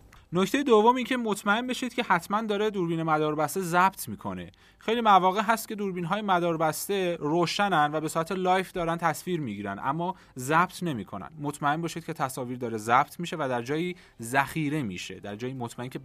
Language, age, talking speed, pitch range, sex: Persian, 30-49, 175 wpm, 130-185 Hz, male